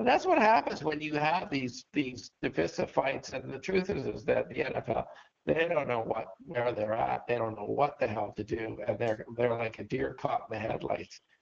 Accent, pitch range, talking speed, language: American, 110-150 Hz, 225 wpm, English